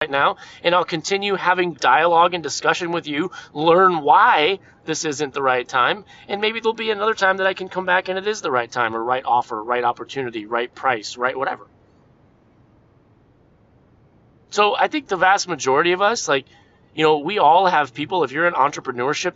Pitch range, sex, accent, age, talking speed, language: 135-180 Hz, male, American, 30-49, 190 wpm, English